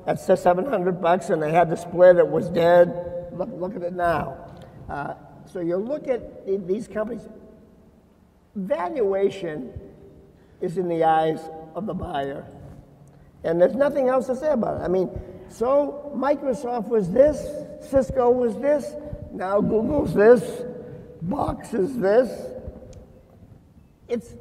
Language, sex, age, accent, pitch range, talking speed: English, male, 50-69, American, 175-245 Hz, 135 wpm